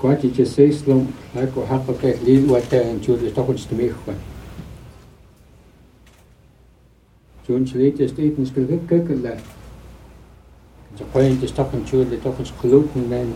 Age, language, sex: 60-79, English, male